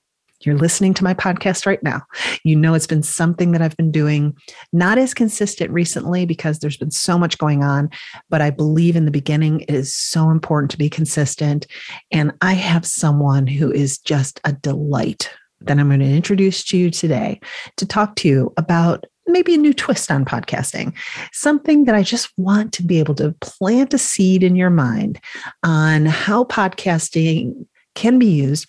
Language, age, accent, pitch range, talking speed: English, 40-59, American, 150-200 Hz, 185 wpm